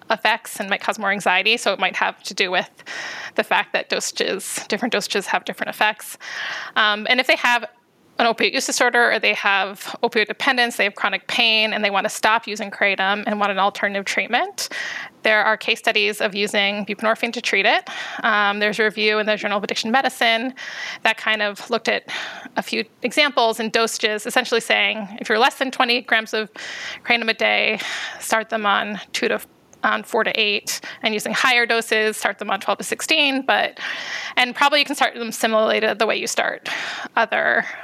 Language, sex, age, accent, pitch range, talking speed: English, female, 20-39, American, 215-250 Hz, 200 wpm